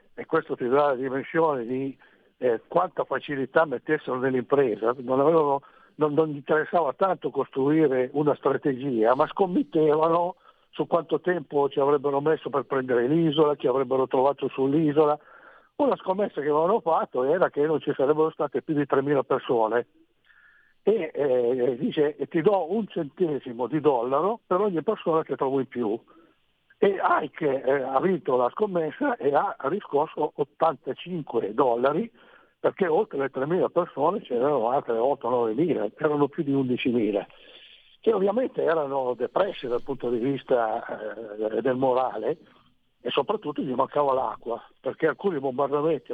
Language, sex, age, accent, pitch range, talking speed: Italian, male, 60-79, native, 135-165 Hz, 140 wpm